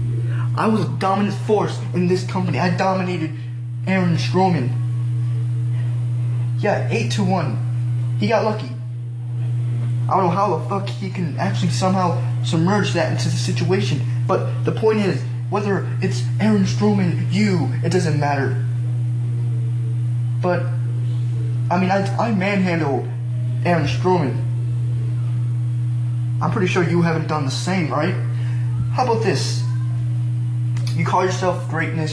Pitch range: 120-125 Hz